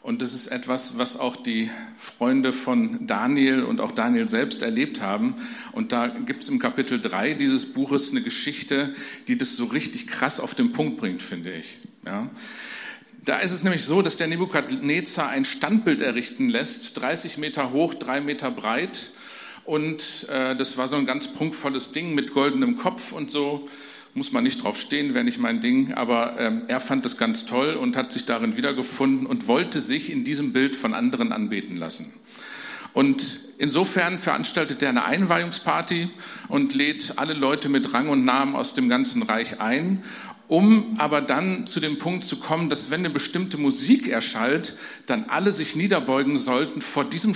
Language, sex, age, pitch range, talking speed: German, male, 50-69, 150-255 Hz, 180 wpm